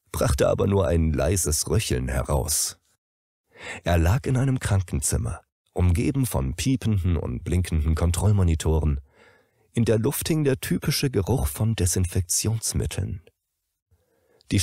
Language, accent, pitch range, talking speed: German, German, 85-125 Hz, 115 wpm